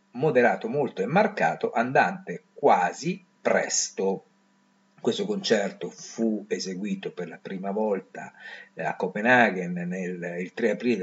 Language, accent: Italian, native